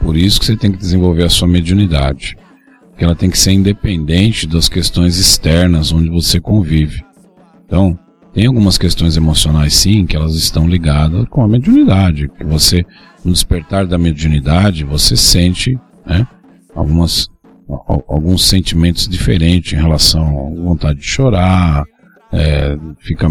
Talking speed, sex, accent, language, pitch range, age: 140 wpm, male, Brazilian, Portuguese, 80-100 Hz, 50-69